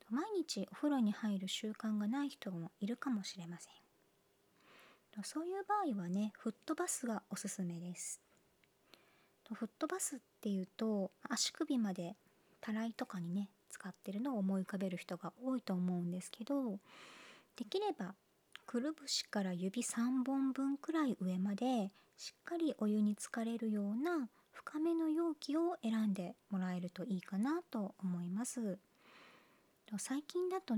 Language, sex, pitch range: Japanese, male, 195-280 Hz